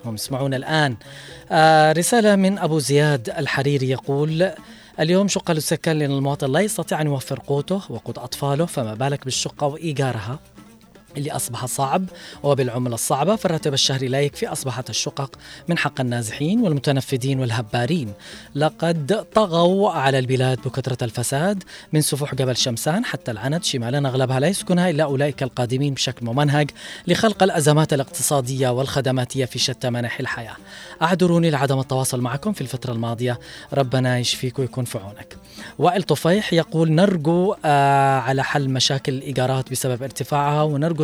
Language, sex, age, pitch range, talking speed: Arabic, female, 20-39, 130-160 Hz, 135 wpm